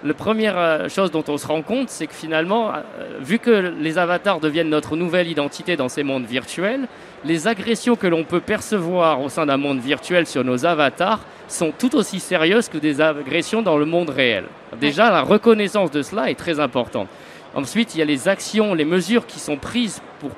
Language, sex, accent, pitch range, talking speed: French, male, French, 145-185 Hz, 200 wpm